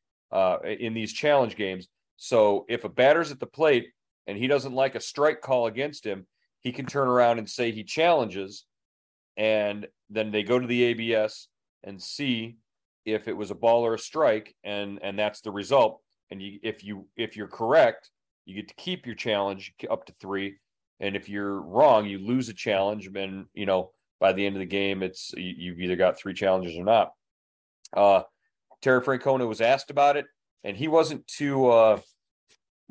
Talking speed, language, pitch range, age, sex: 190 wpm, English, 100-125 Hz, 40-59, male